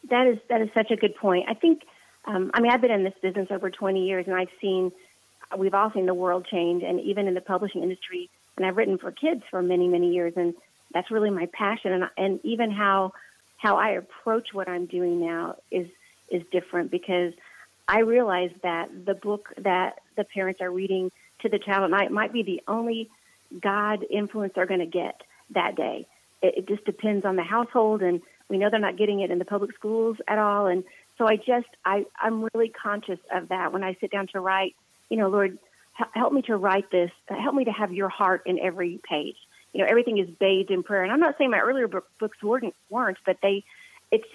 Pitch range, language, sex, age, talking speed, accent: 185-220 Hz, English, female, 40-59, 220 wpm, American